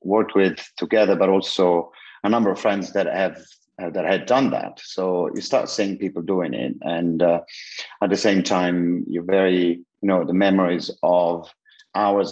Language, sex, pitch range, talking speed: English, male, 85-100 Hz, 180 wpm